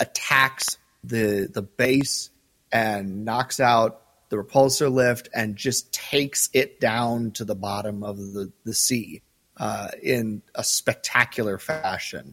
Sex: male